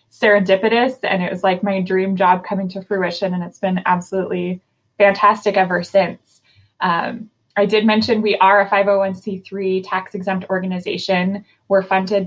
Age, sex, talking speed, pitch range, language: 20-39, female, 145 wpm, 185-215 Hz, English